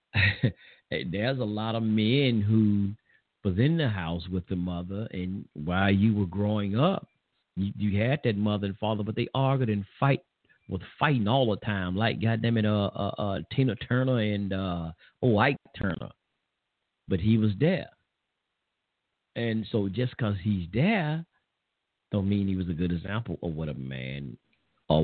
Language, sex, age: English, male, 40-59